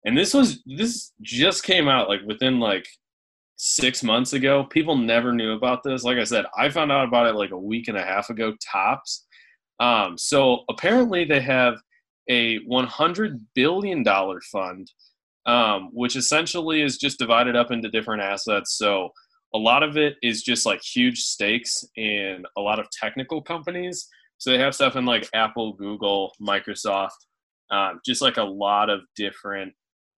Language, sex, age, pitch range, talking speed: English, male, 20-39, 100-140 Hz, 170 wpm